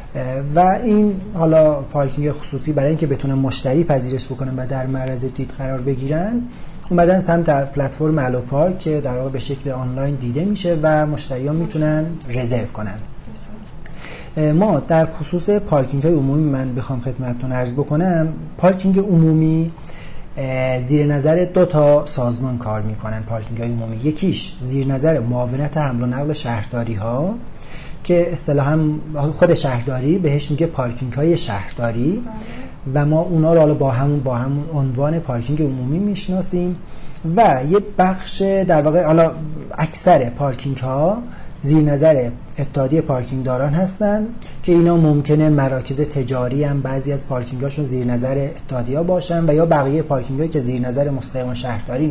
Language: Persian